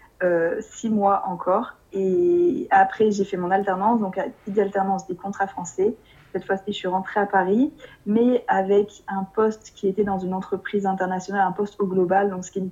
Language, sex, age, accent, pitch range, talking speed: French, female, 20-39, French, 180-205 Hz, 190 wpm